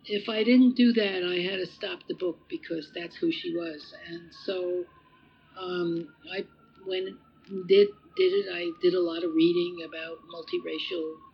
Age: 60-79